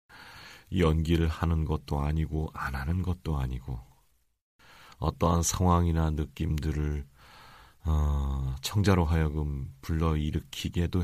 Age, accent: 40-59, native